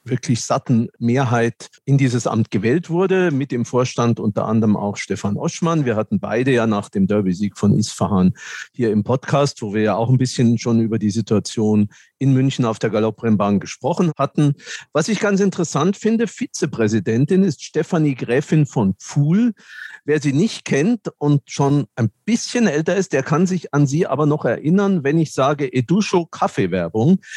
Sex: male